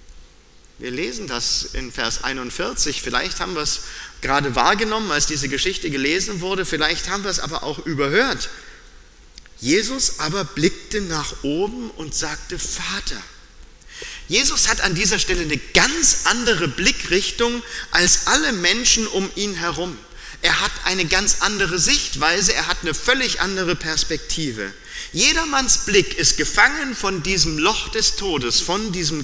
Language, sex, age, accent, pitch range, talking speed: German, male, 40-59, German, 150-205 Hz, 145 wpm